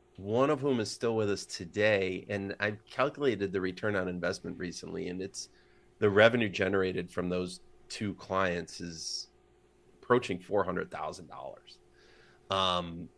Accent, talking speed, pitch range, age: American, 145 wpm, 95-115 Hz, 30-49